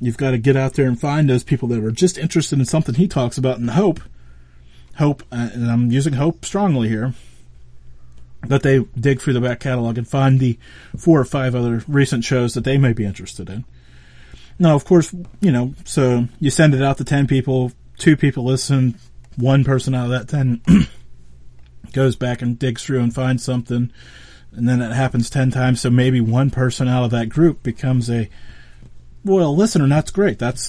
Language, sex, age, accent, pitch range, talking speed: English, male, 30-49, American, 100-140 Hz, 200 wpm